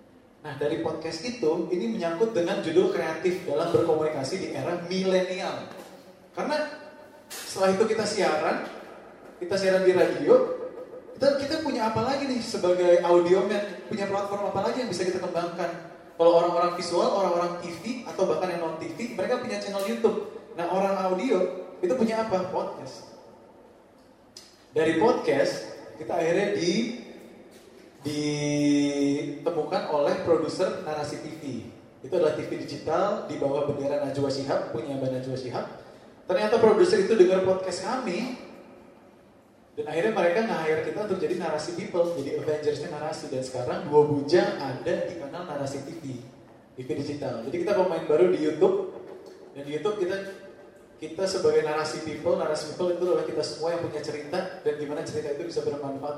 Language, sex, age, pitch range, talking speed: English, male, 20-39, 150-195 Hz, 150 wpm